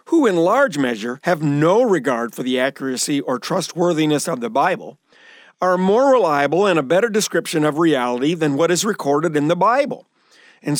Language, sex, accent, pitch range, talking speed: English, male, American, 145-205 Hz, 180 wpm